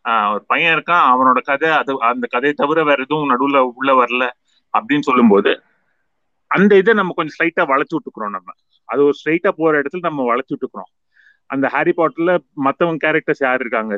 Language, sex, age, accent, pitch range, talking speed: Tamil, male, 30-49, native, 120-150 Hz, 160 wpm